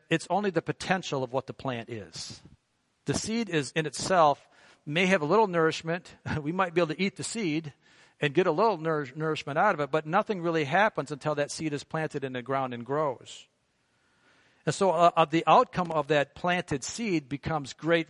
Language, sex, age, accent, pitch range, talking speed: English, male, 50-69, American, 145-180 Hz, 205 wpm